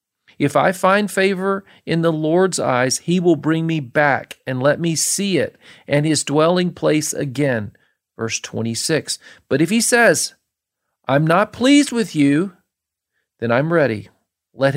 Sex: male